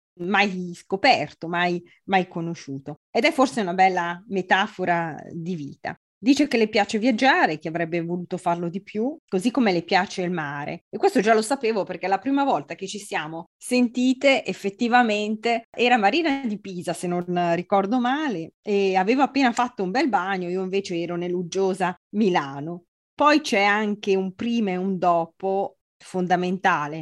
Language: Italian